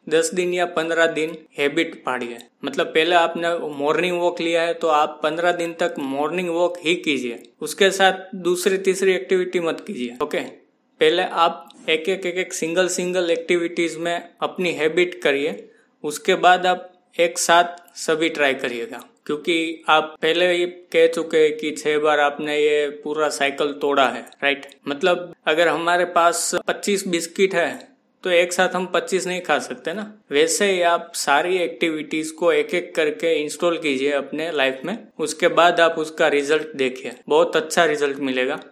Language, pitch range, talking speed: Hindi, 150-180 Hz, 170 wpm